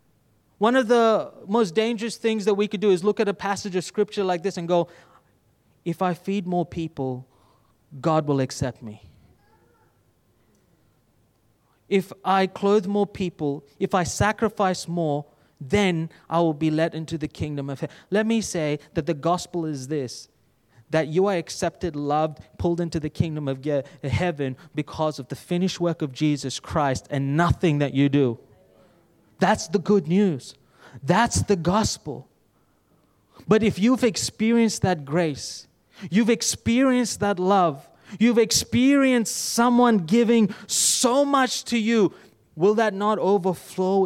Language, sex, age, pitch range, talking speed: English, male, 20-39, 140-205 Hz, 150 wpm